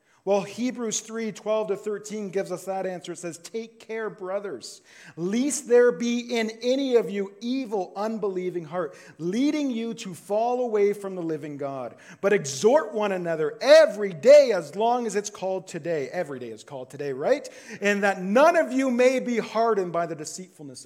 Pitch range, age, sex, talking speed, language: 180-240 Hz, 40-59, male, 180 wpm, English